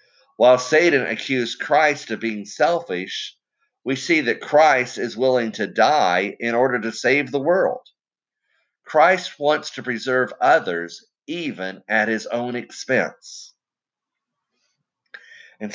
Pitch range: 95-130 Hz